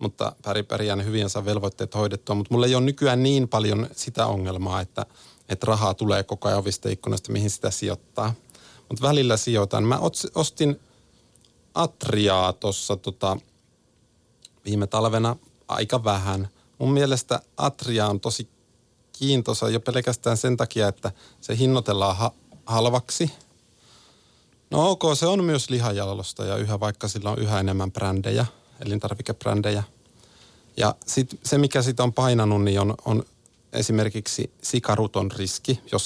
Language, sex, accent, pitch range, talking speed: Finnish, male, native, 105-130 Hz, 135 wpm